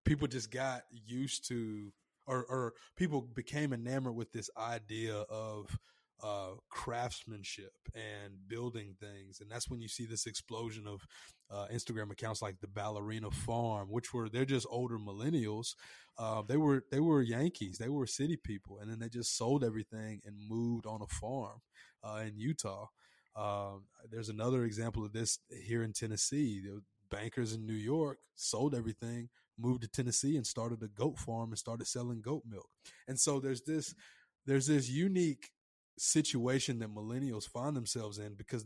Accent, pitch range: American, 110-135 Hz